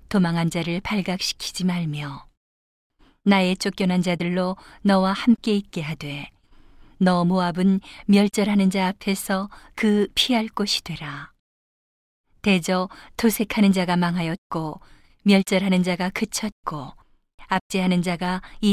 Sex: female